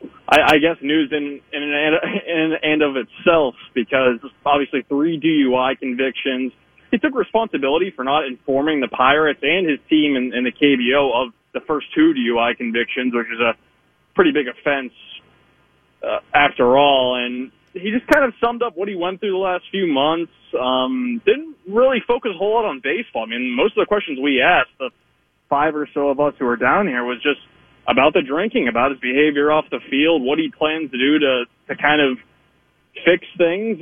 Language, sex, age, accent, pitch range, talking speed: English, male, 20-39, American, 130-200 Hz, 195 wpm